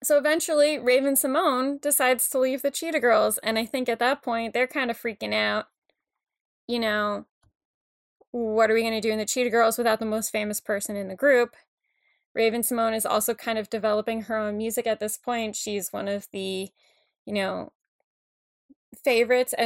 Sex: female